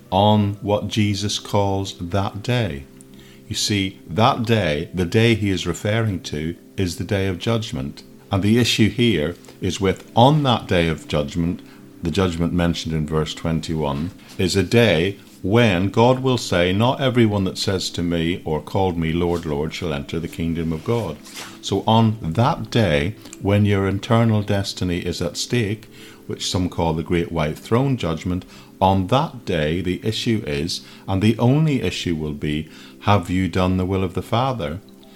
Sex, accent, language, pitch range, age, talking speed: male, British, English, 85-110 Hz, 50-69, 170 wpm